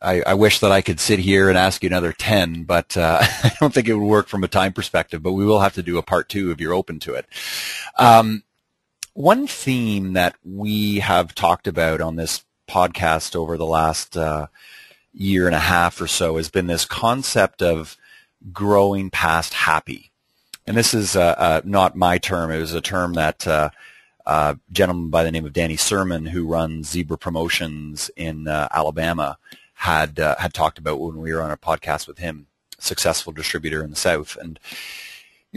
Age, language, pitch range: 30-49, English, 80-100 Hz